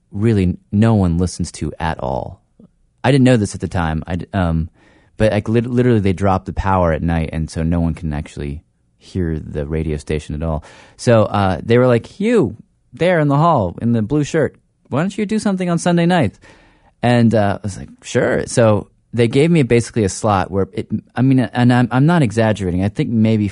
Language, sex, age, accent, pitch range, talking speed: English, male, 30-49, American, 90-115 Hz, 215 wpm